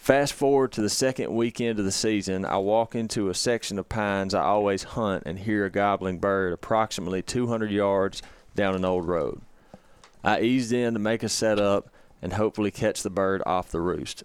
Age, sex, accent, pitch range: 30-49, male, American, 95-110 Hz